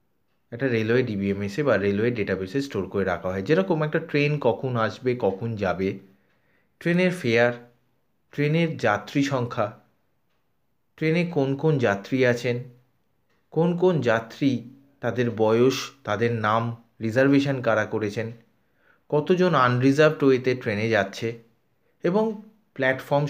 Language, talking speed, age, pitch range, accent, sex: Bengali, 110 wpm, 30-49, 115-155 Hz, native, male